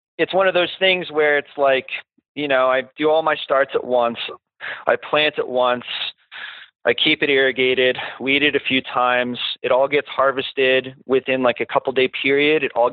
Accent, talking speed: American, 190 wpm